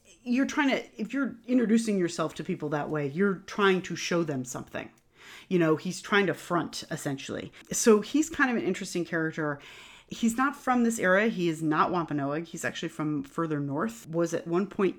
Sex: female